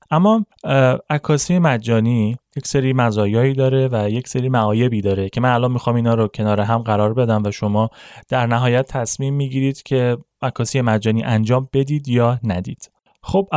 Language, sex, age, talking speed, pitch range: Persian, male, 20-39, 155 wpm, 110-140 Hz